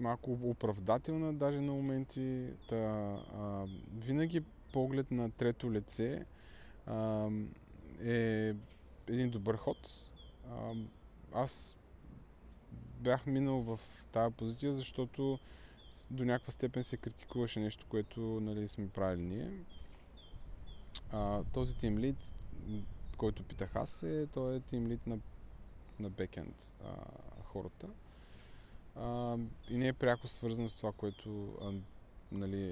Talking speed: 110 wpm